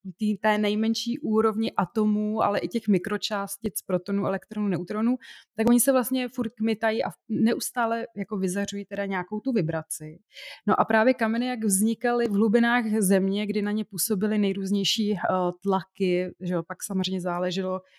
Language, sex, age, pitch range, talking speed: Czech, female, 30-49, 185-225 Hz, 145 wpm